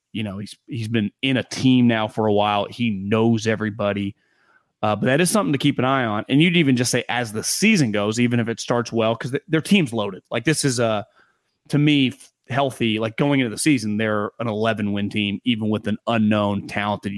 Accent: American